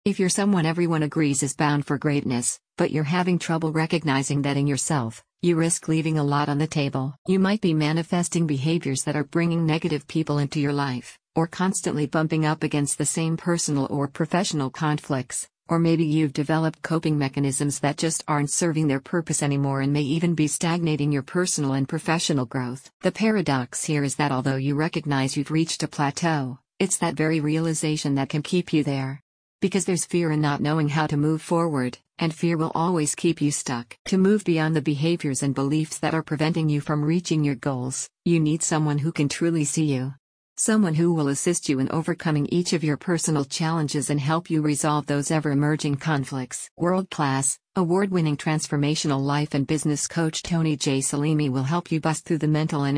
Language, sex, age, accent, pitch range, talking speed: English, female, 50-69, American, 145-165 Hz, 195 wpm